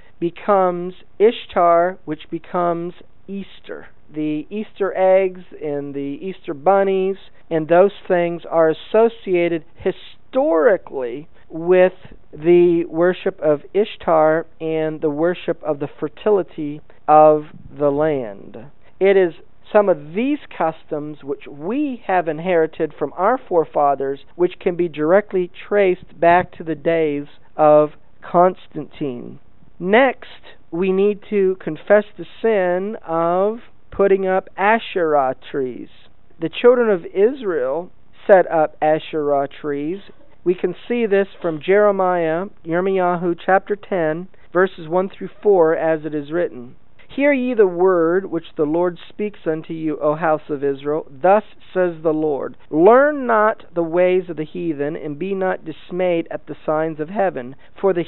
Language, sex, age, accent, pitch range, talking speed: English, male, 50-69, American, 155-195 Hz, 135 wpm